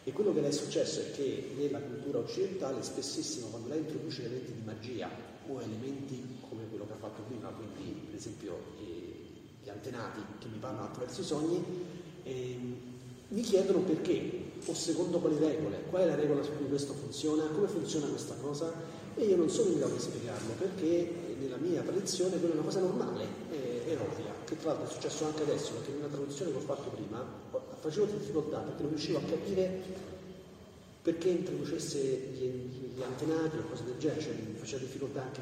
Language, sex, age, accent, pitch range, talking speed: Italian, male, 40-59, native, 115-165 Hz, 190 wpm